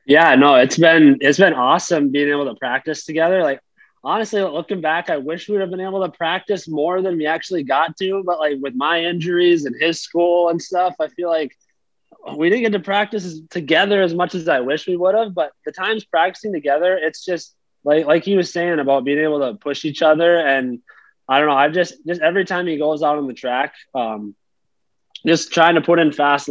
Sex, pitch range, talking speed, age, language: male, 135-170 Hz, 225 wpm, 20-39, English